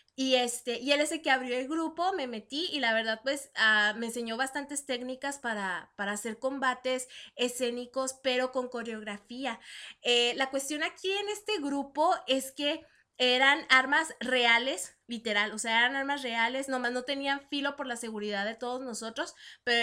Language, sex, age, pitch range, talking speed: Spanish, female, 20-39, 230-285 Hz, 175 wpm